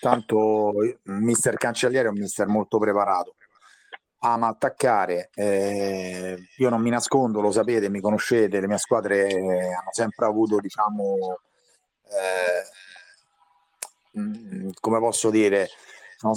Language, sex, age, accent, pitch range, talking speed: Italian, male, 30-49, native, 100-115 Hz, 115 wpm